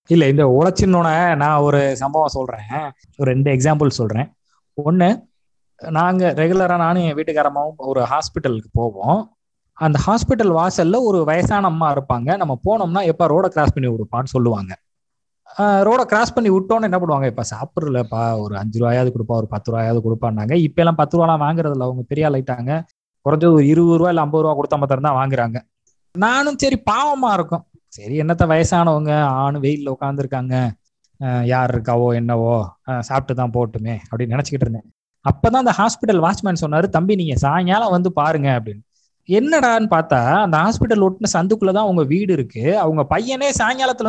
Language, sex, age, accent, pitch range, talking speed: Tamil, male, 20-39, native, 125-190 Hz, 150 wpm